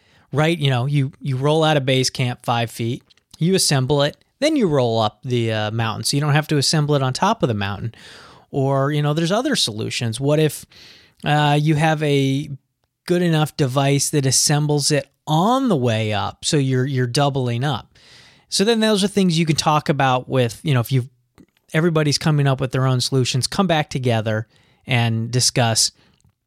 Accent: American